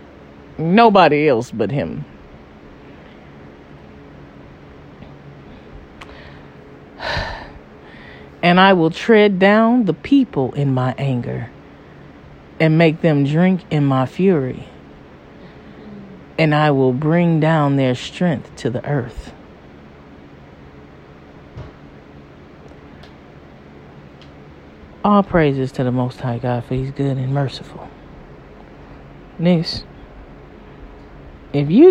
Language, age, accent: English, 40-59, American